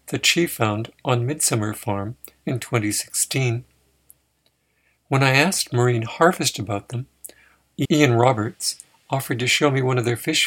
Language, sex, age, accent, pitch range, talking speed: English, male, 60-79, American, 115-140 Hz, 145 wpm